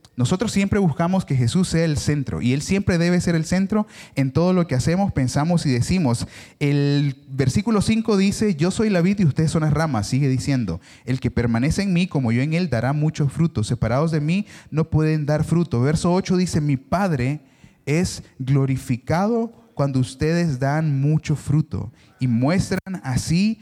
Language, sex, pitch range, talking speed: Spanish, male, 130-185 Hz, 185 wpm